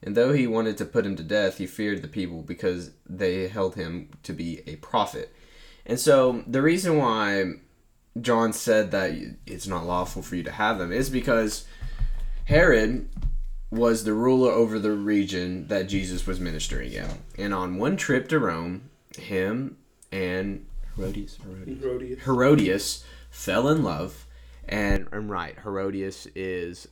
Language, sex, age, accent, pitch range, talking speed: English, male, 10-29, American, 80-110 Hz, 155 wpm